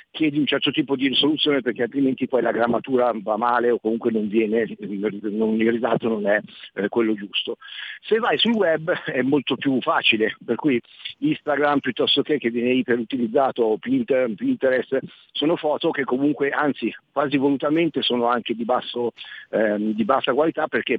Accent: native